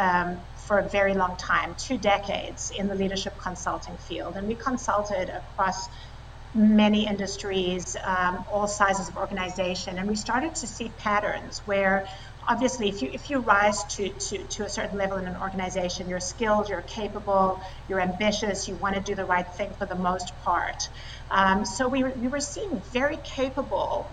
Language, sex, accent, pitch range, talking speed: English, female, American, 190-215 Hz, 170 wpm